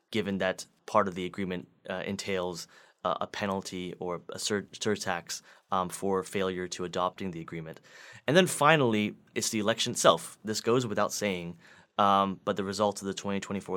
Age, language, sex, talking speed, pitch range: 20-39, English, male, 165 wpm, 90-105 Hz